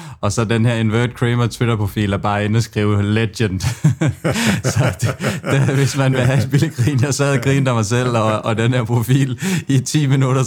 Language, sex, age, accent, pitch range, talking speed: Danish, male, 20-39, native, 110-130 Hz, 200 wpm